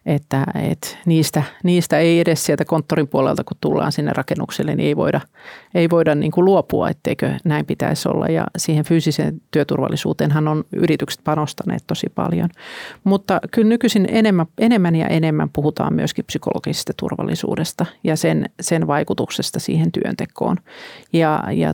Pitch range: 155-190 Hz